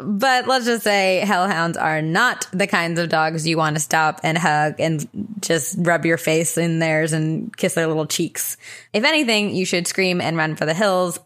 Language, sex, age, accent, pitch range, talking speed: English, female, 20-39, American, 165-200 Hz, 210 wpm